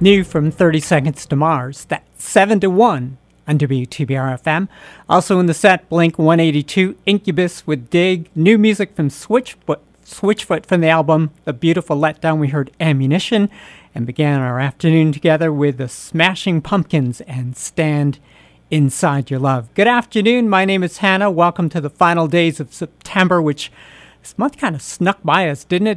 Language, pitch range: English, 150-185 Hz